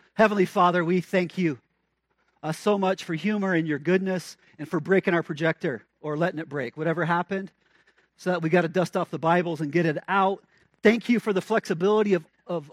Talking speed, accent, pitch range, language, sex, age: 205 wpm, American, 170-215 Hz, English, male, 40-59